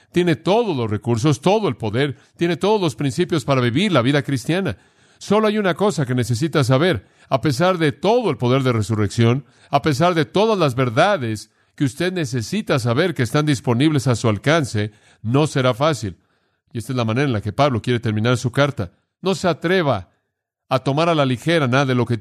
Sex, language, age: male, Spanish, 40-59